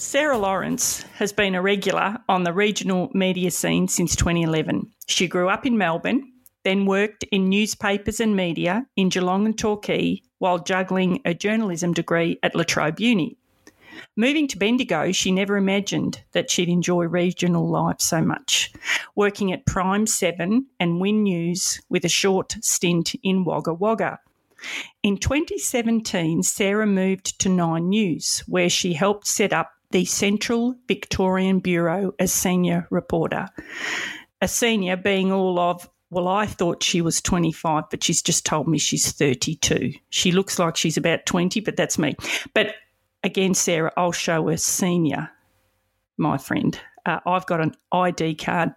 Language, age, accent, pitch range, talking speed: English, 40-59, Australian, 170-205 Hz, 155 wpm